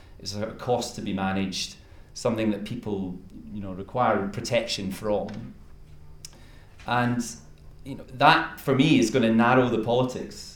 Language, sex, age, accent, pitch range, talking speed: English, male, 30-49, British, 95-115 Hz, 150 wpm